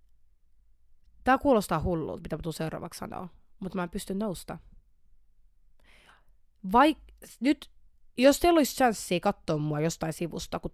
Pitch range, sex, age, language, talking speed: 155-225 Hz, female, 30-49, Finnish, 130 wpm